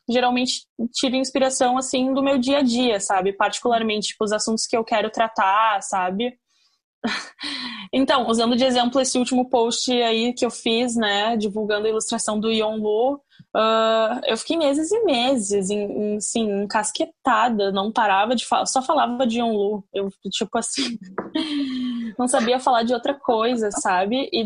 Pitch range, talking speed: 215-260 Hz, 165 wpm